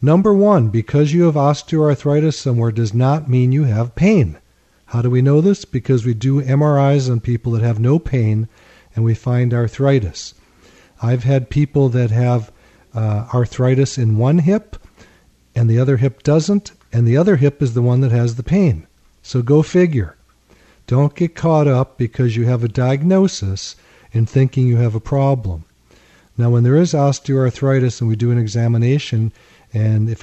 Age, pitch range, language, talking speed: 50-69, 115-140 Hz, English, 175 wpm